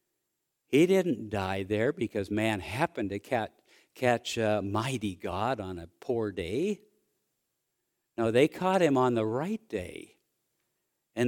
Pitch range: 100-120 Hz